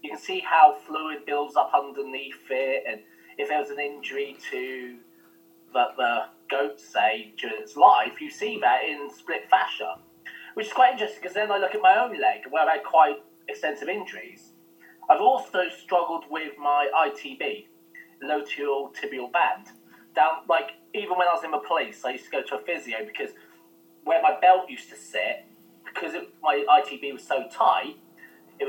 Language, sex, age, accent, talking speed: English, male, 20-39, British, 180 wpm